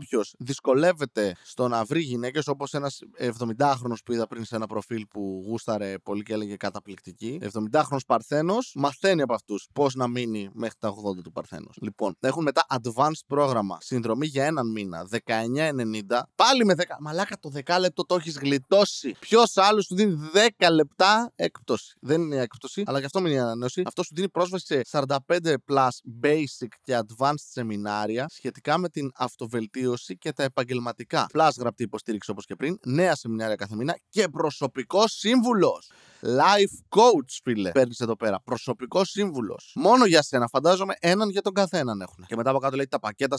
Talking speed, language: 170 wpm, Greek